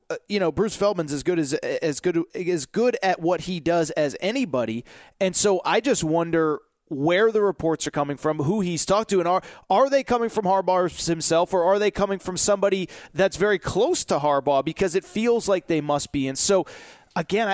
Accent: American